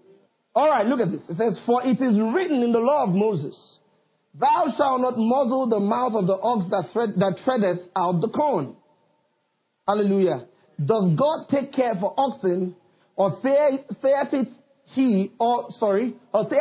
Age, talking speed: 40-59, 160 wpm